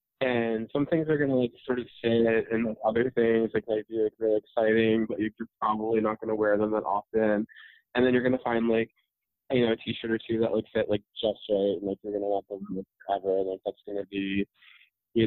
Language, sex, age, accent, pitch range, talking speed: English, male, 20-39, American, 105-120 Hz, 250 wpm